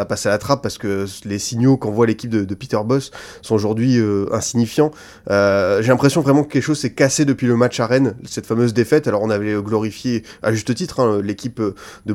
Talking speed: 220 wpm